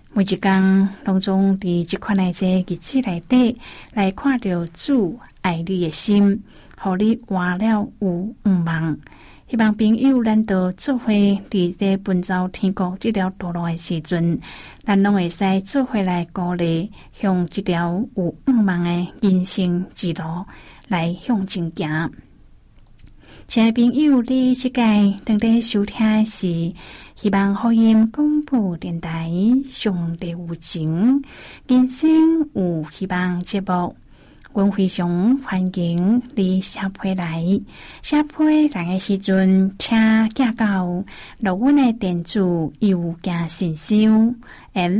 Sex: female